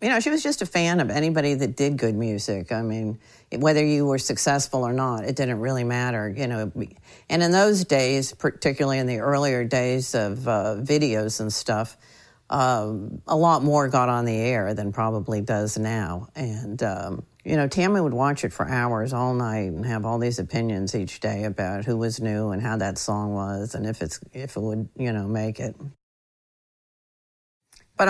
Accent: American